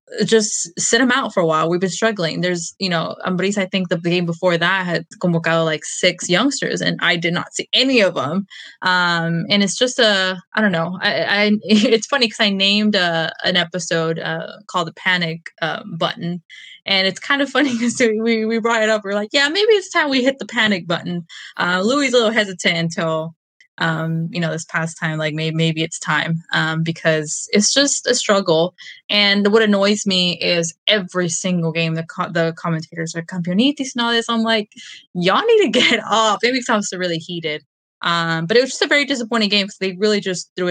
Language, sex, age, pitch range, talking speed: English, female, 20-39, 165-215 Hz, 220 wpm